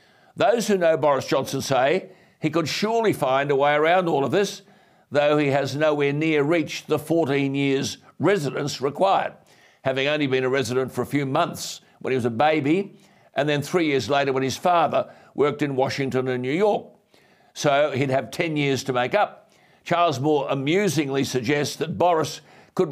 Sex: male